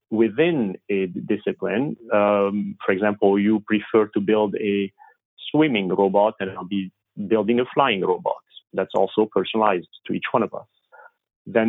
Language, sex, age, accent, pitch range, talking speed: English, male, 40-59, French, 100-120 Hz, 150 wpm